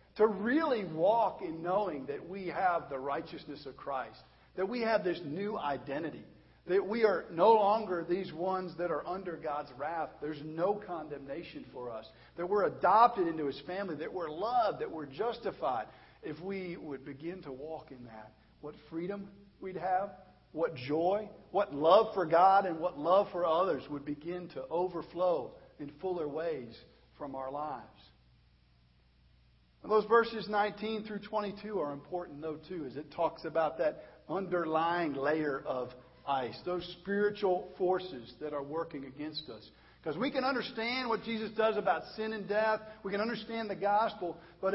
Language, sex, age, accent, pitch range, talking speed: English, male, 50-69, American, 150-210 Hz, 165 wpm